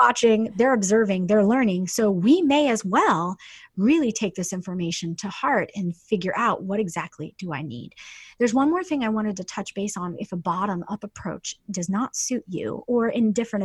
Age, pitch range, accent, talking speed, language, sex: 30-49, 185-225 Hz, American, 200 wpm, English, female